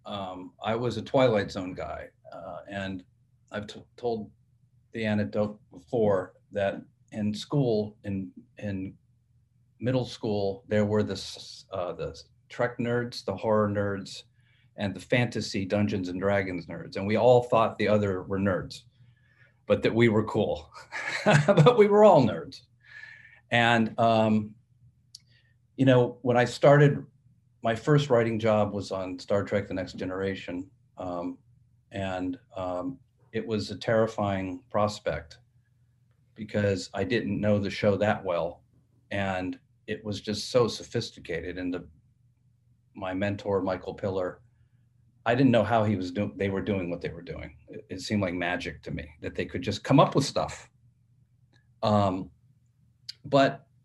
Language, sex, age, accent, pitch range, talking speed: English, male, 40-59, American, 100-125 Hz, 150 wpm